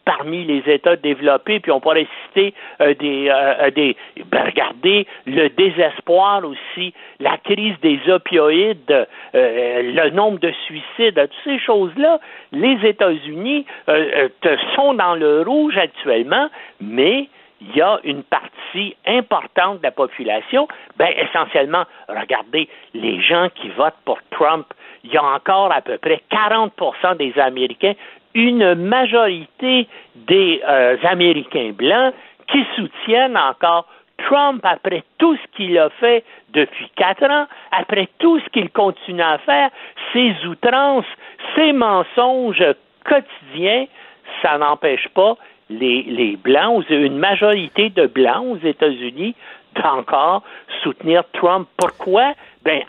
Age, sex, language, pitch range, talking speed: 60-79, male, French, 160-260 Hz, 130 wpm